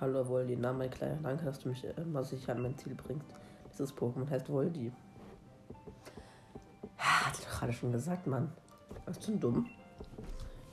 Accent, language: German, German